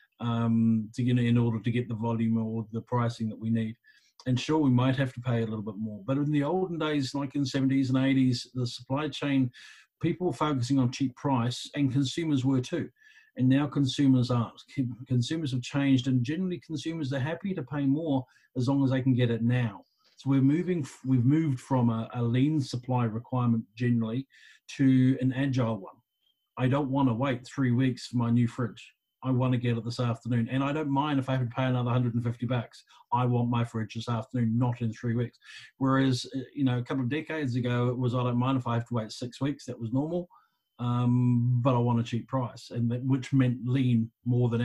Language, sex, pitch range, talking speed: English, male, 120-135 Hz, 225 wpm